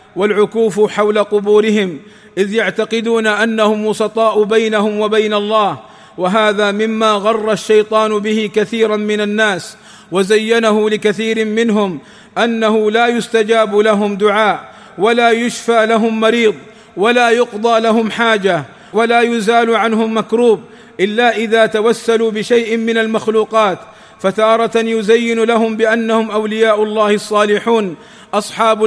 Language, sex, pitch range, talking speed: Arabic, male, 215-230 Hz, 110 wpm